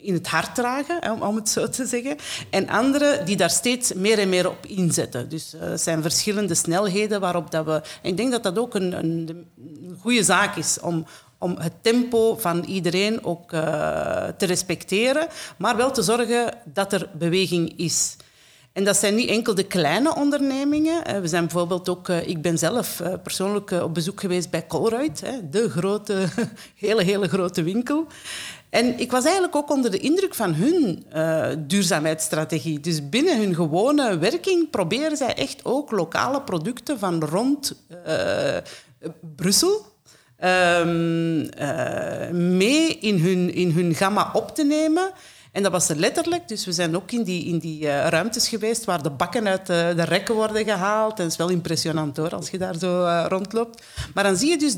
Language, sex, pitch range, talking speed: Dutch, female, 170-235 Hz, 180 wpm